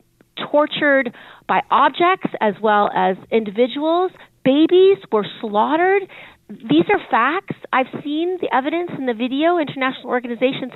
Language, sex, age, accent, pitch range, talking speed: English, female, 40-59, American, 235-315 Hz, 130 wpm